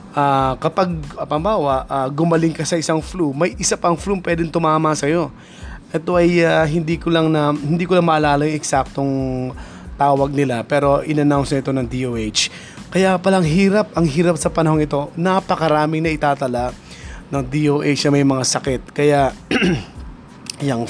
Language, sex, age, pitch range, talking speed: Filipino, male, 20-39, 130-160 Hz, 165 wpm